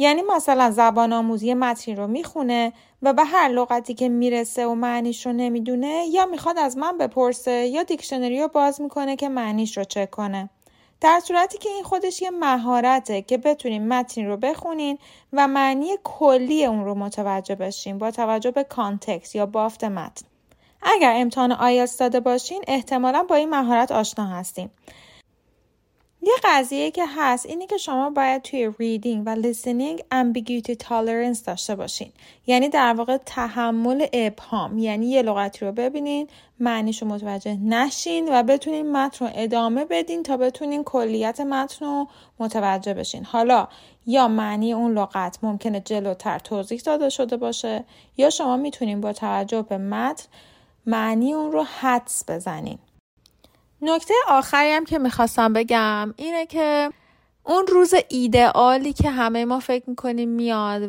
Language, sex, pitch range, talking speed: Persian, female, 220-280 Hz, 145 wpm